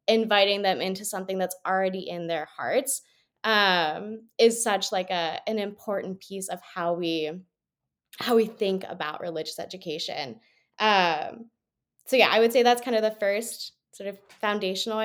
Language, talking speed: English, 160 wpm